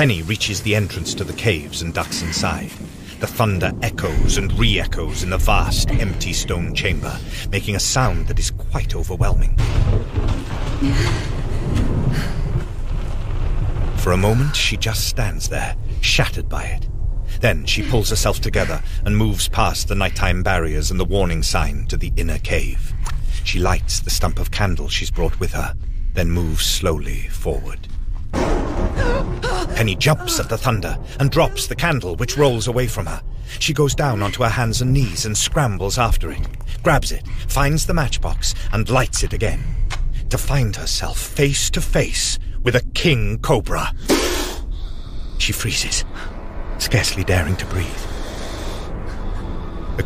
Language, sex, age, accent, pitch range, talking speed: English, male, 40-59, British, 85-110 Hz, 145 wpm